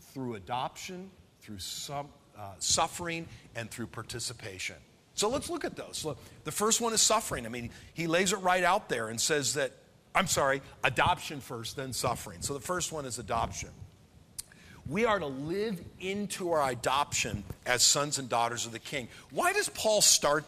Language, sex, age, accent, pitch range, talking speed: English, male, 50-69, American, 120-175 Hz, 180 wpm